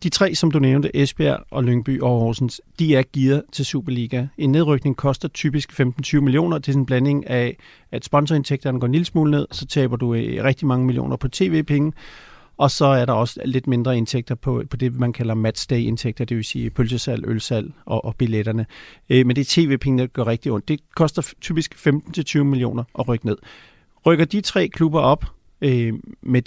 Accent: native